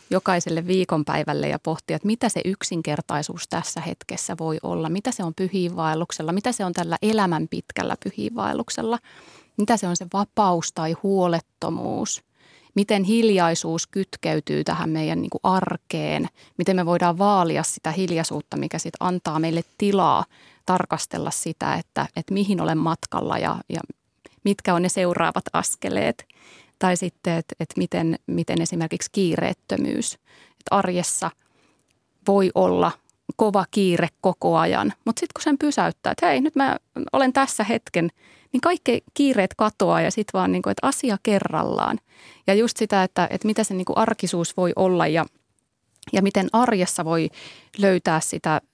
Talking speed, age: 145 wpm, 30-49